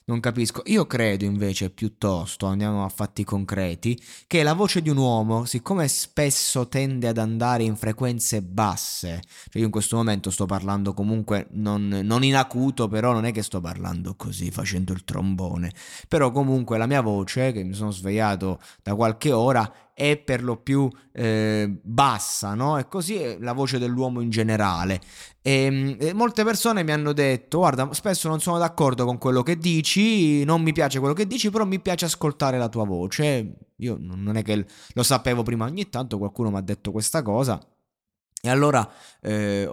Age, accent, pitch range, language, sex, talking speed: 20-39, native, 105-140 Hz, Italian, male, 185 wpm